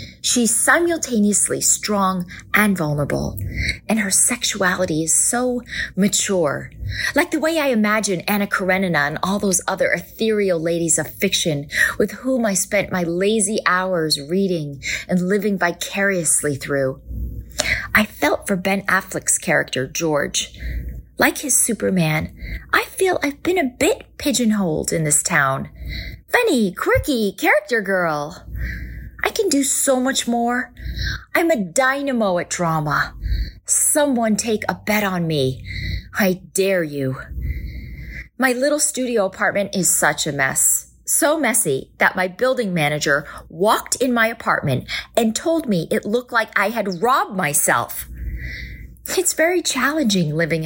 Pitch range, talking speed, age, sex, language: 160-245 Hz, 135 wpm, 30-49, female, English